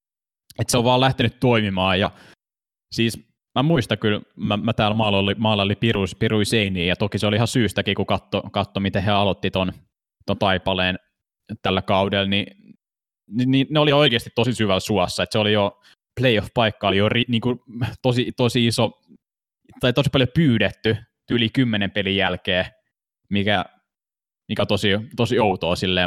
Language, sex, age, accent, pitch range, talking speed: Finnish, male, 20-39, native, 95-115 Hz, 155 wpm